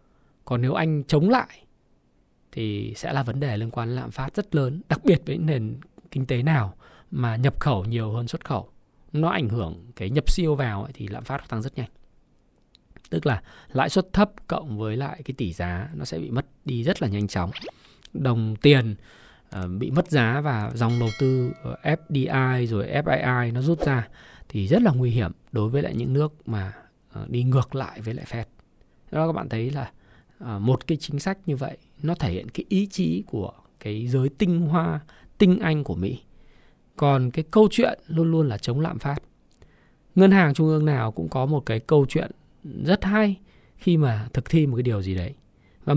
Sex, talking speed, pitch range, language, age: male, 200 wpm, 120-170 Hz, Vietnamese, 20-39